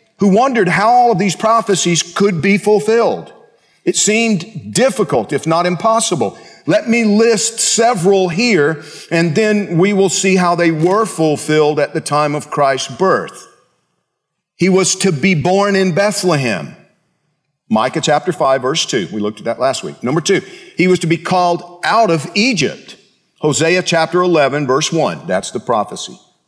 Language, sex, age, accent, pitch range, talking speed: English, male, 50-69, American, 145-195 Hz, 165 wpm